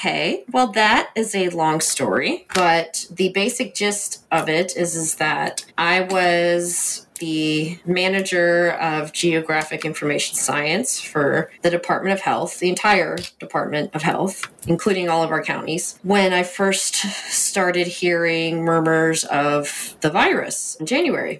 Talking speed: 140 wpm